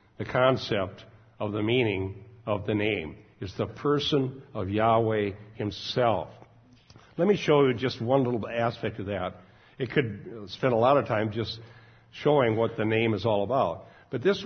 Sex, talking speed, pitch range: male, 170 wpm, 110-130 Hz